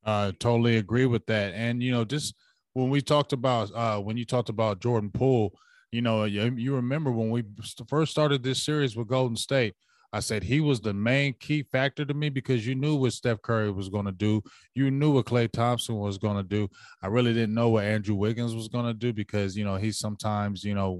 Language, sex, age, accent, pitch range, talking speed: English, male, 20-39, American, 105-130 Hz, 230 wpm